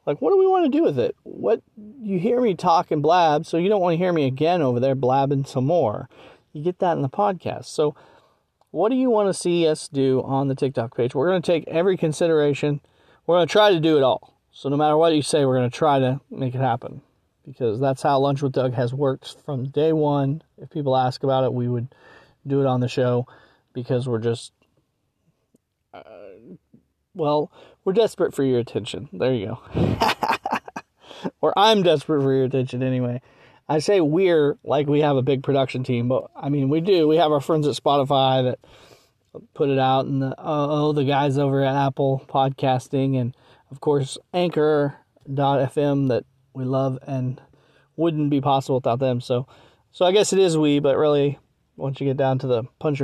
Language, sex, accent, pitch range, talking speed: English, male, American, 130-155 Hz, 205 wpm